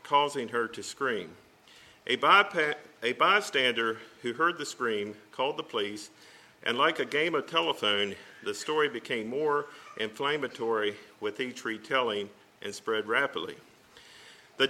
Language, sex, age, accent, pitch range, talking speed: English, male, 50-69, American, 115-145 Hz, 135 wpm